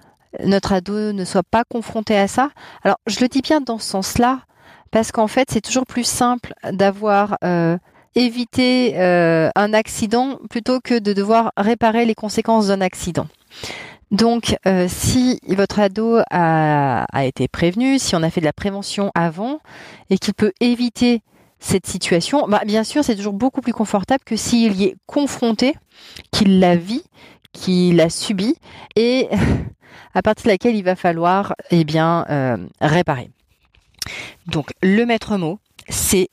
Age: 30-49